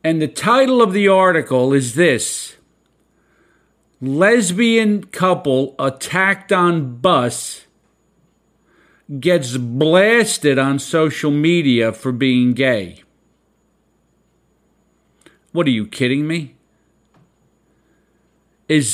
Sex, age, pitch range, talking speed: male, 50-69, 140-185 Hz, 85 wpm